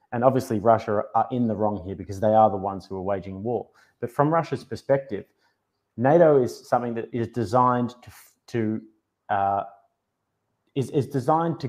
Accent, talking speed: Australian, 175 wpm